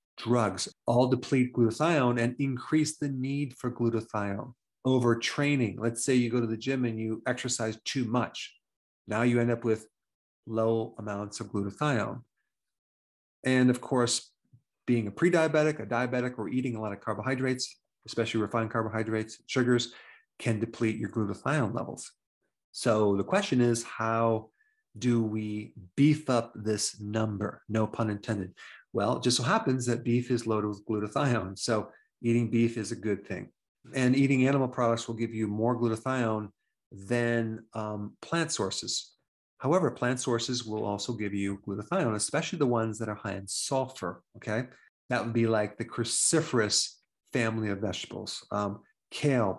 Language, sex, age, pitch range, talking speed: English, male, 30-49, 110-125 Hz, 155 wpm